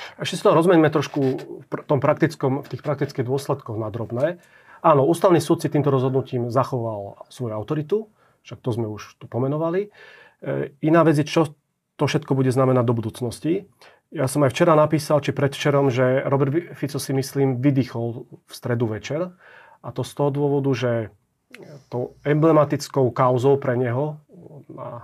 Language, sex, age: Slovak, male, 40-59